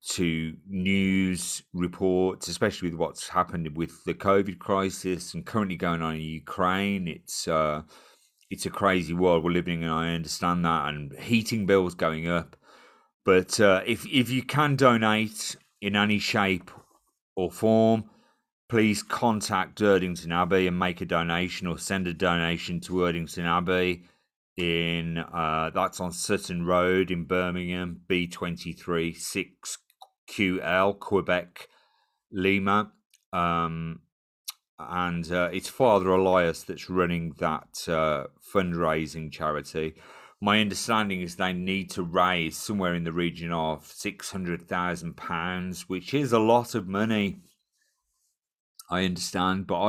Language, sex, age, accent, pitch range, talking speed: English, male, 30-49, British, 85-100 Hz, 135 wpm